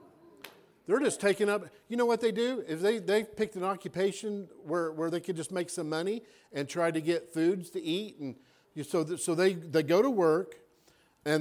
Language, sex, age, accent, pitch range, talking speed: English, male, 50-69, American, 155-190 Hz, 215 wpm